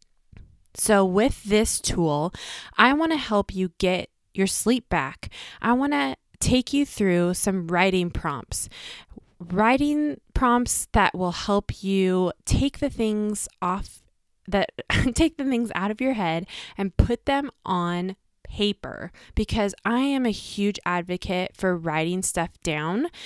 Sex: female